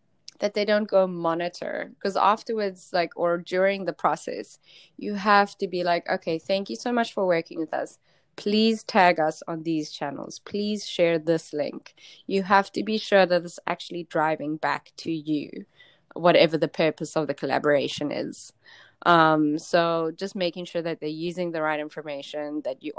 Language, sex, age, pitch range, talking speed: English, female, 20-39, 155-195 Hz, 180 wpm